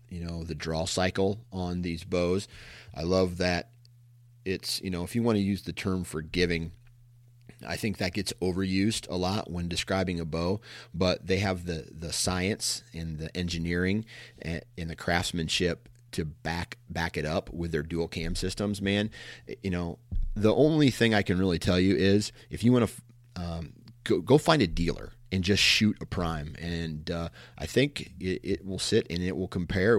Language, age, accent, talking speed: English, 40-59, American, 190 wpm